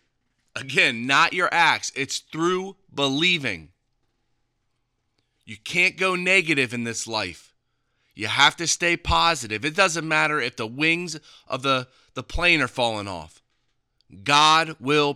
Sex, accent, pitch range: male, American, 120-170 Hz